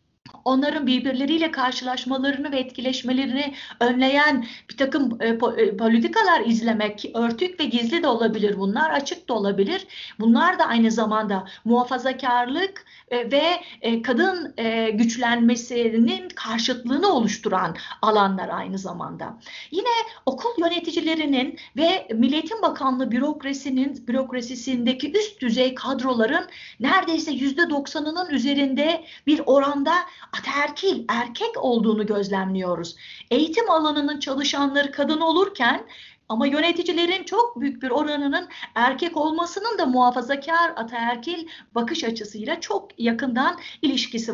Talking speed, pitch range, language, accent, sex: 95 wpm, 235-315 Hz, Turkish, native, female